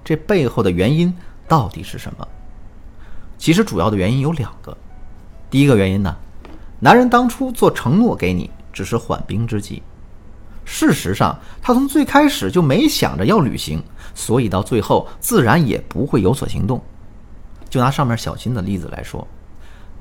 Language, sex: Chinese, male